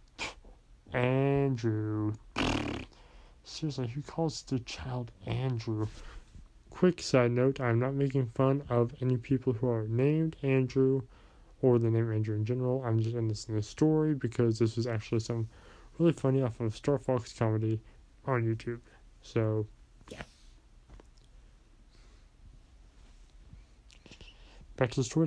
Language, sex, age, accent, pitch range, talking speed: English, male, 20-39, American, 110-135 Hz, 130 wpm